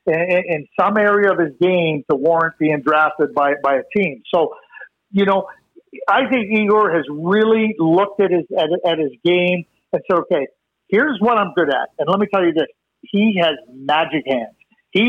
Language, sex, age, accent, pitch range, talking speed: English, male, 50-69, American, 165-215 Hz, 195 wpm